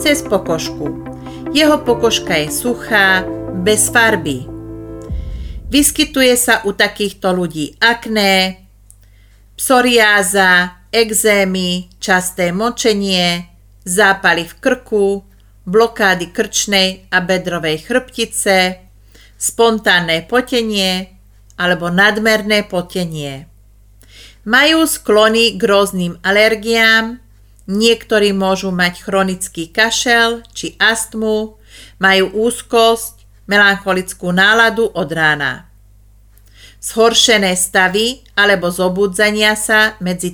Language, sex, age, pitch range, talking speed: Slovak, female, 40-59, 145-220 Hz, 80 wpm